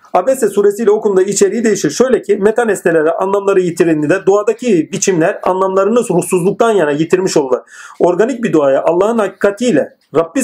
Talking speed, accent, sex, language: 140 wpm, native, male, Turkish